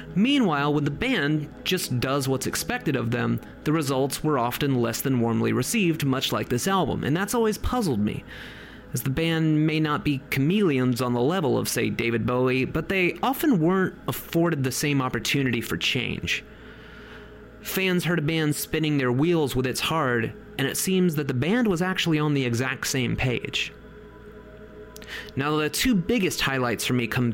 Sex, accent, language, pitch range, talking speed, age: male, American, English, 125-170 Hz, 180 wpm, 30-49